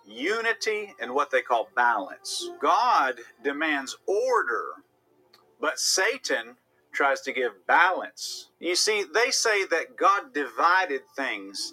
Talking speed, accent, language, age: 120 wpm, American, English, 50-69